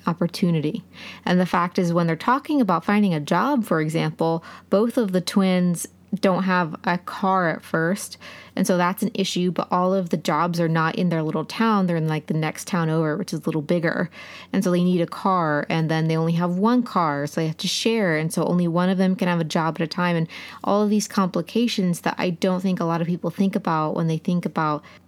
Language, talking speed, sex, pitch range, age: English, 245 wpm, female, 165-195 Hz, 20-39